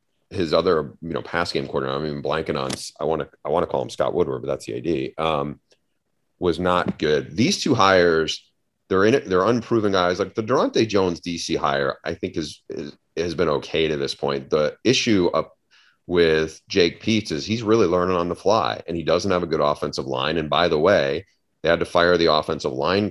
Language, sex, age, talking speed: English, male, 30-49, 225 wpm